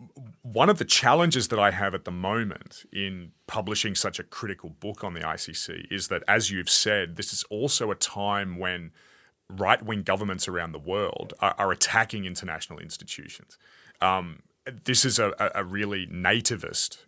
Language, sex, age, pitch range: English, male, 30-49, 90-110 Hz